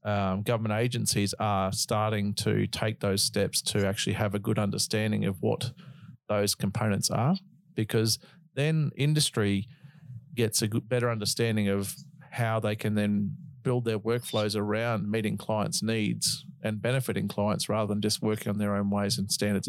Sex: male